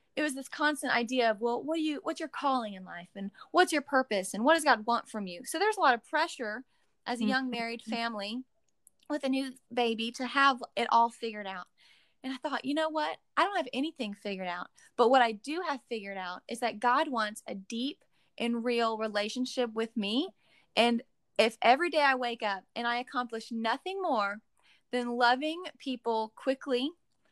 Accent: American